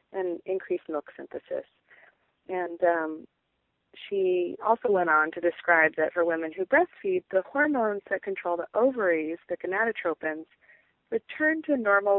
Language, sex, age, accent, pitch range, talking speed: English, female, 30-49, American, 165-210 Hz, 140 wpm